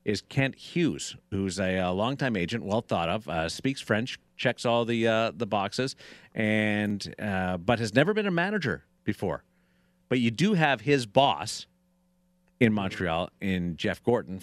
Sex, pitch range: male, 95-150 Hz